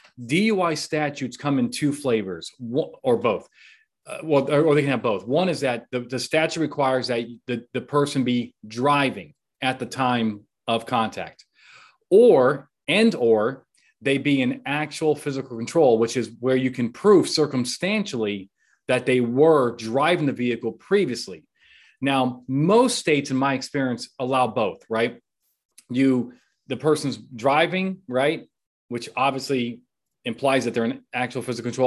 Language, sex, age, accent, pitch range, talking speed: English, male, 30-49, American, 115-145 Hz, 150 wpm